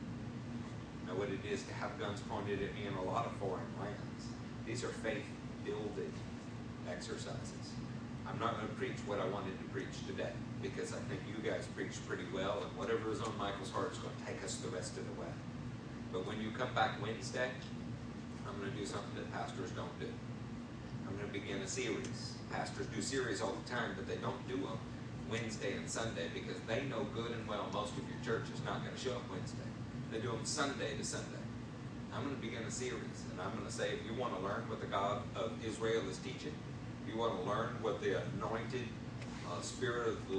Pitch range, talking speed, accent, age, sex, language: 115-125 Hz, 220 wpm, American, 40-59, male, English